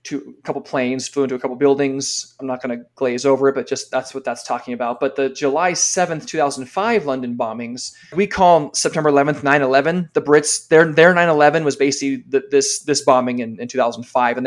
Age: 20-39